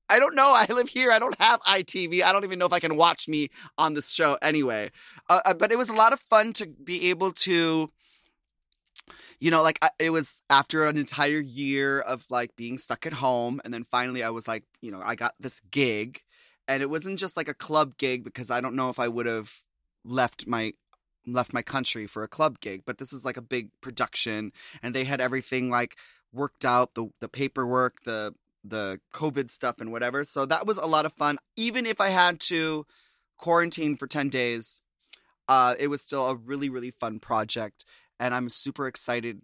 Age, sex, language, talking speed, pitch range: 30-49, male, English, 215 wpm, 120-160 Hz